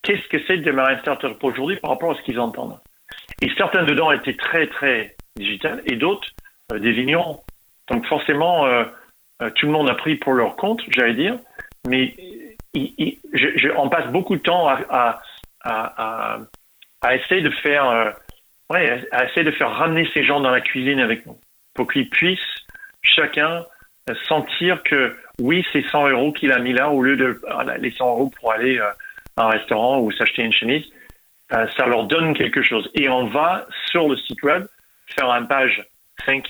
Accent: French